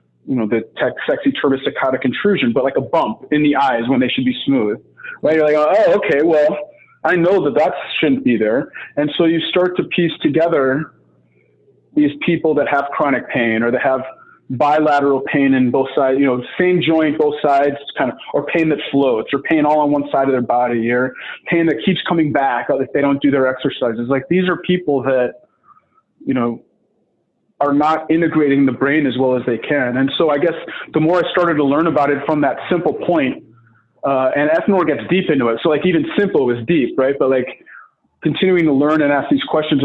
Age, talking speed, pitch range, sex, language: 30-49, 210 wpm, 130-155 Hz, male, English